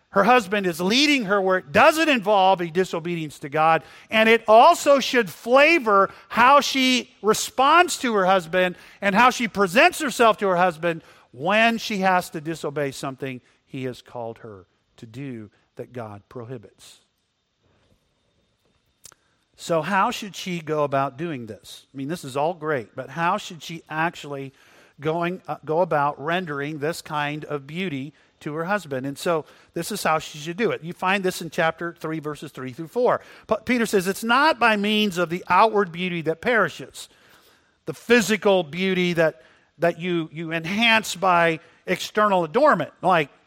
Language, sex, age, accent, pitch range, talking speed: English, male, 50-69, American, 145-200 Hz, 170 wpm